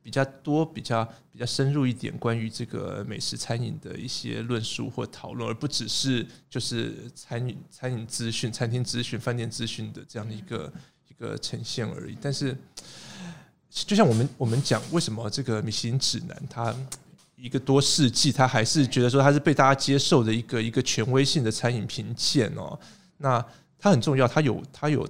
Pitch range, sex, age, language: 115-140 Hz, male, 20-39, Chinese